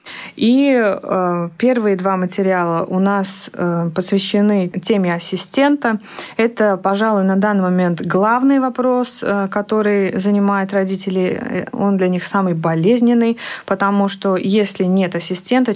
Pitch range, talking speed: 180-220 Hz, 110 wpm